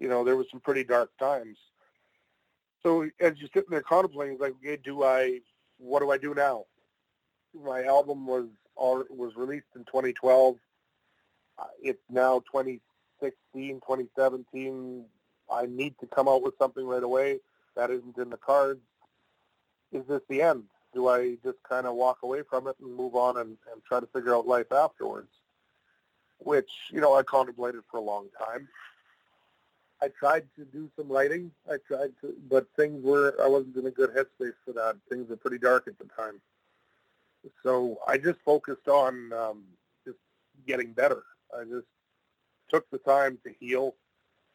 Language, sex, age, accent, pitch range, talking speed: English, male, 40-59, American, 125-145 Hz, 165 wpm